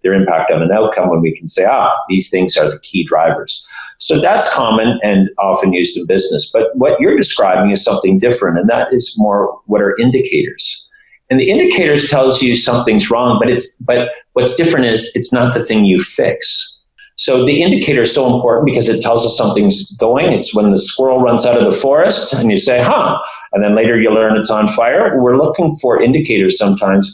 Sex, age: male, 40-59